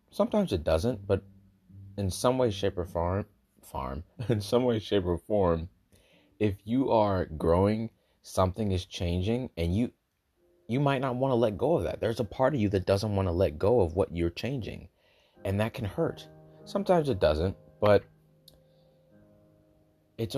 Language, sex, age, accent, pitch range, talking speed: English, male, 30-49, American, 85-120 Hz, 175 wpm